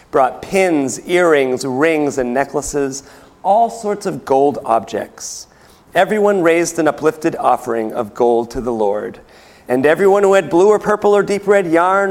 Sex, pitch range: male, 140-195 Hz